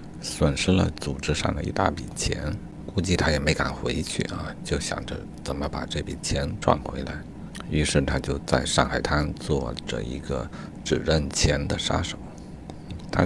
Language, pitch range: Chinese, 70-85 Hz